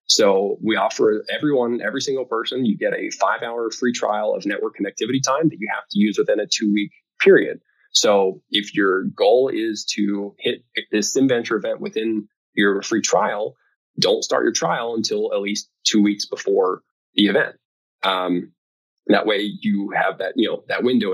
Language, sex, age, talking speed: English, male, 20-39, 175 wpm